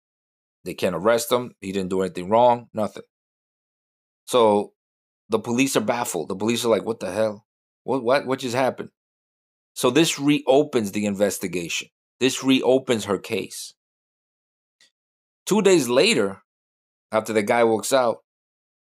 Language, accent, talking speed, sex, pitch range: English, American, 140 wpm, male, 90-120 Hz